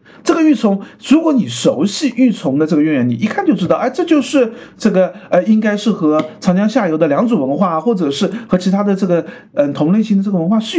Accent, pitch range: native, 185-270 Hz